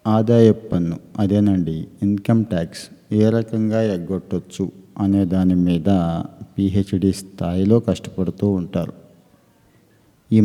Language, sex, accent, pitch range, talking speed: Telugu, male, native, 95-100 Hz, 90 wpm